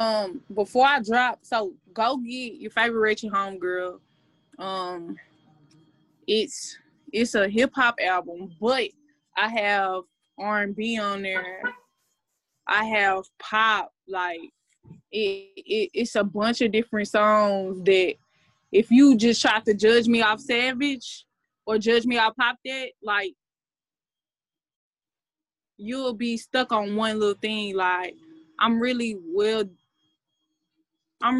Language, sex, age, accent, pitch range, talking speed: English, female, 20-39, American, 195-240 Hz, 125 wpm